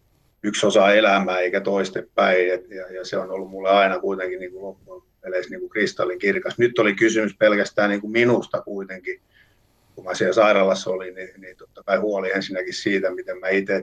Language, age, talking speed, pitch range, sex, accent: Finnish, 50-69, 185 wpm, 90-100 Hz, male, native